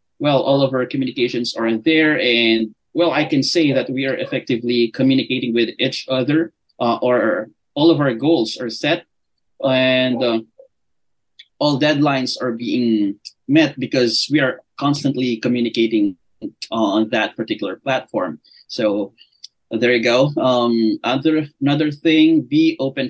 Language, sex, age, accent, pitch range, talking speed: English, male, 20-39, Filipino, 115-145 Hz, 140 wpm